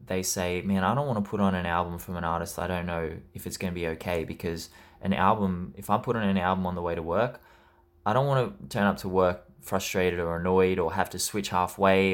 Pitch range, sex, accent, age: 85-100 Hz, male, Australian, 20-39